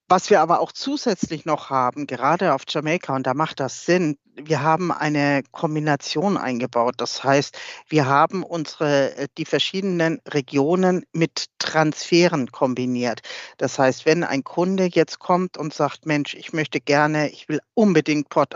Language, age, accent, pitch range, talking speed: German, 50-69, German, 150-180 Hz, 150 wpm